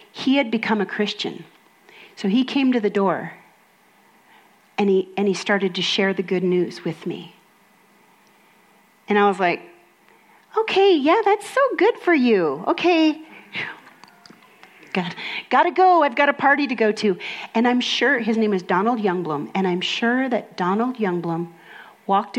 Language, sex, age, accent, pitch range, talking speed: English, female, 40-59, American, 185-235 Hz, 160 wpm